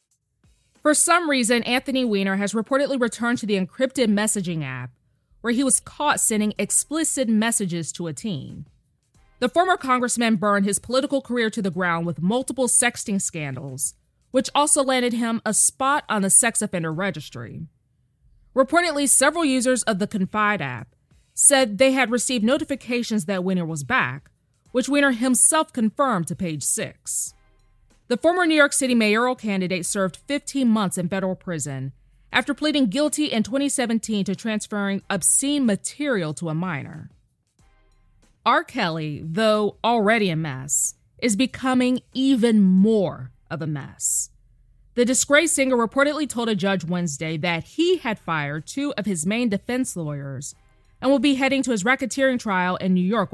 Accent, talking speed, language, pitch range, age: American, 155 wpm, English, 165-260 Hz, 20-39